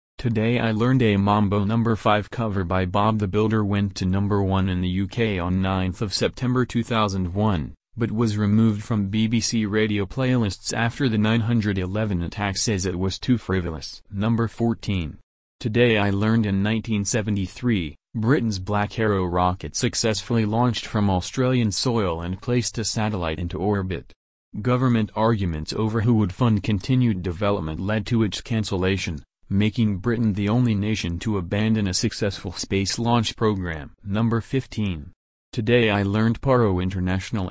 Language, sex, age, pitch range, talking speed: English, male, 30-49, 95-115 Hz, 145 wpm